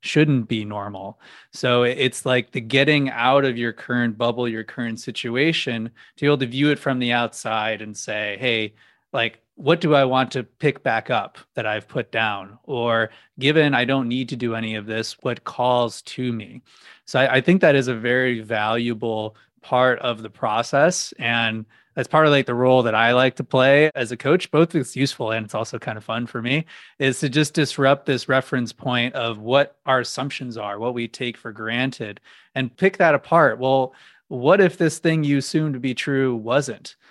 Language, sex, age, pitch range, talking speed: English, male, 20-39, 115-135 Hz, 205 wpm